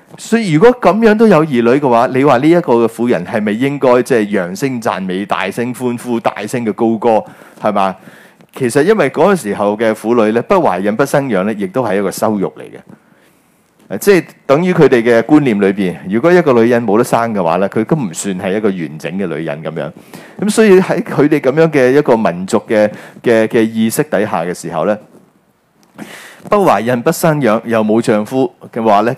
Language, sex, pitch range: Chinese, male, 110-160 Hz